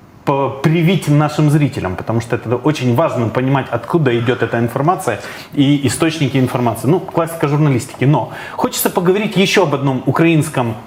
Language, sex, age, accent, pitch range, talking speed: Russian, male, 20-39, native, 130-170 Hz, 145 wpm